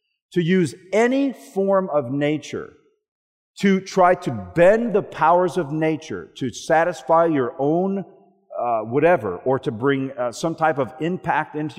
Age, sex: 50-69, male